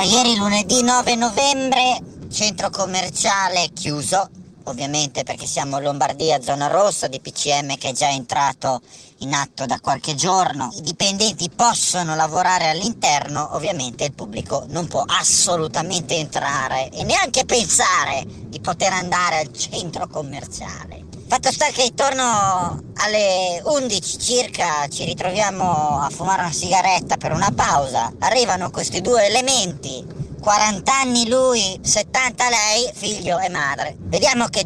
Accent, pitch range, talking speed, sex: native, 170-245 Hz, 135 wpm, male